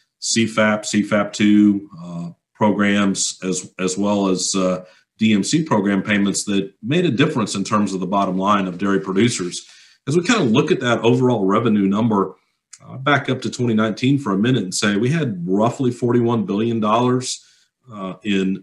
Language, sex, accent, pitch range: English, male, American, 95-115 Hz